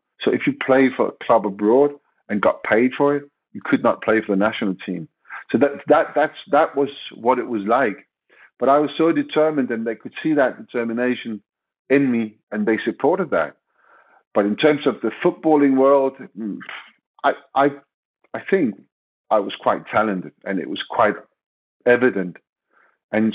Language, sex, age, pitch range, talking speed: English, male, 50-69, 105-135 Hz, 175 wpm